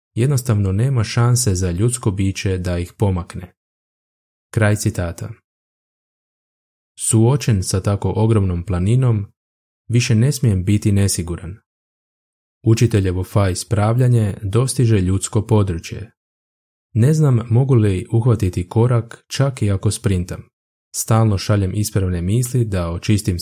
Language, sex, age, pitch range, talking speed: Croatian, male, 20-39, 95-115 Hz, 110 wpm